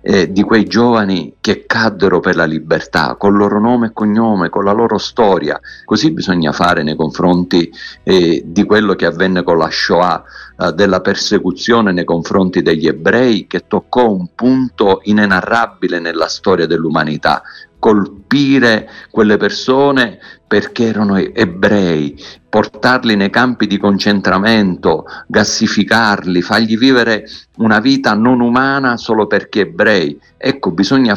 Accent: native